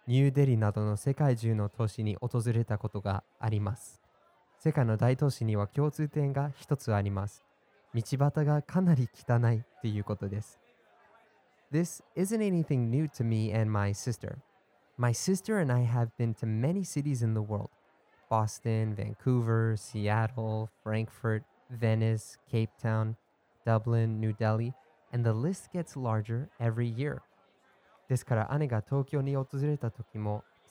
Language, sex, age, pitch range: Japanese, male, 20-39, 110-140 Hz